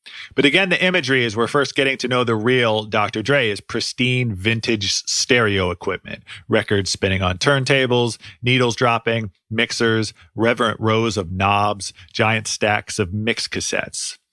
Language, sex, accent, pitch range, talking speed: English, male, American, 95-125 Hz, 145 wpm